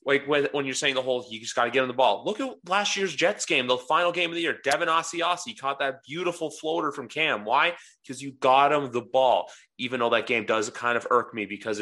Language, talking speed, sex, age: English, 260 wpm, male, 20-39